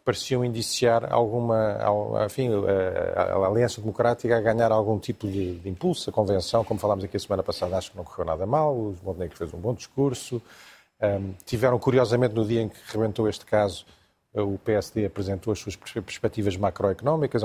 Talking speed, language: 180 wpm, Portuguese